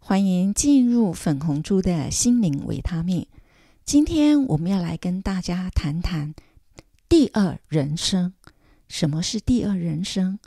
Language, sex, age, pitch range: Chinese, female, 50-69, 165-240 Hz